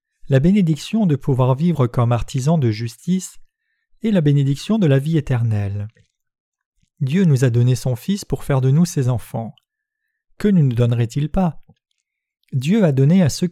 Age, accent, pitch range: 40-59, French, 125-180 Hz